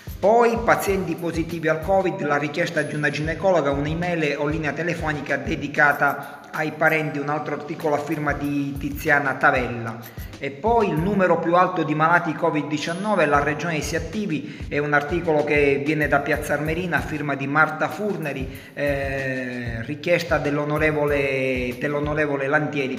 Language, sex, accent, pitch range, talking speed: Italian, male, native, 140-155 Hz, 145 wpm